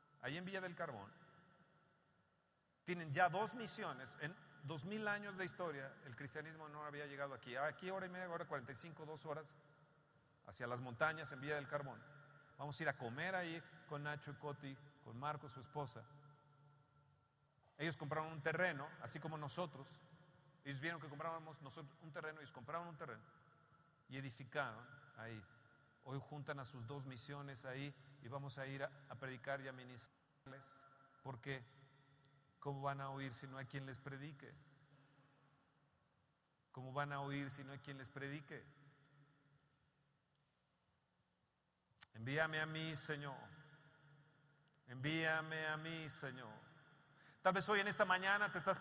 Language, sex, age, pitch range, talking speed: Spanish, male, 40-59, 140-170 Hz, 155 wpm